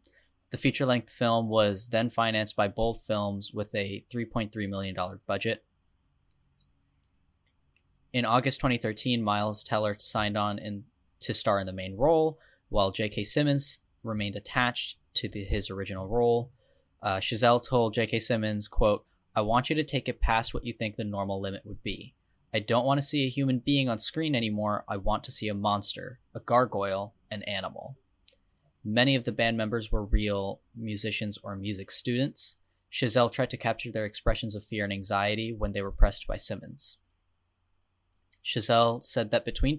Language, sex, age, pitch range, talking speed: English, male, 10-29, 100-120 Hz, 165 wpm